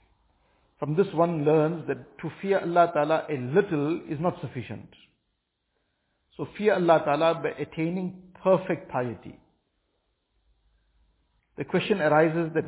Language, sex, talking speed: English, male, 125 wpm